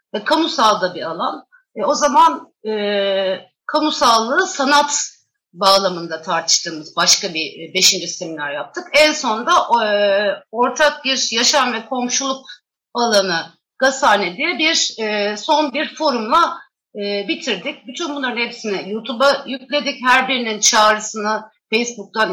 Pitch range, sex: 205-285 Hz, female